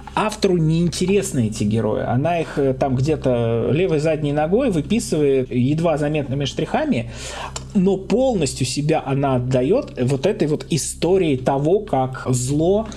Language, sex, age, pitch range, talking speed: Russian, male, 20-39, 130-170 Hz, 130 wpm